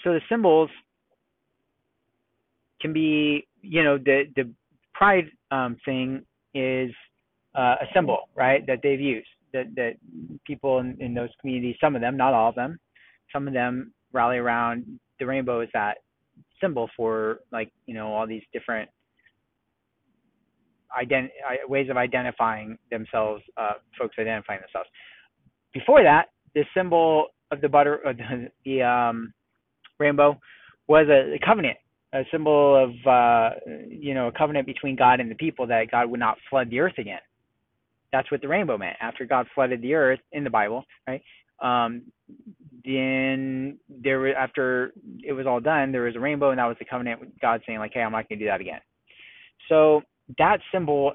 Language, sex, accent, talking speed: English, male, American, 165 wpm